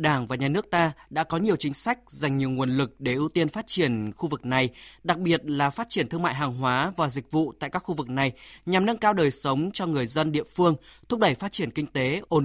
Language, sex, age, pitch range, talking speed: Vietnamese, male, 20-39, 145-180 Hz, 270 wpm